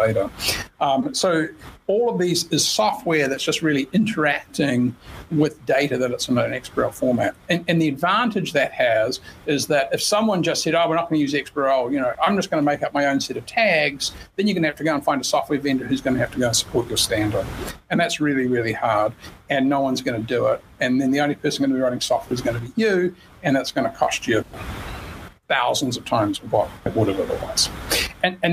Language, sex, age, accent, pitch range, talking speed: English, male, 50-69, American, 135-170 Hz, 245 wpm